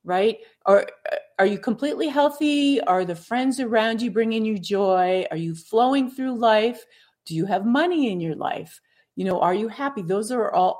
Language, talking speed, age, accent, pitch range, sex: English, 195 wpm, 40-59, American, 170-225 Hz, female